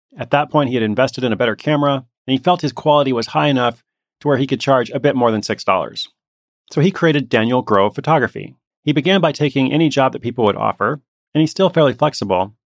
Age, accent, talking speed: 30-49, American, 230 wpm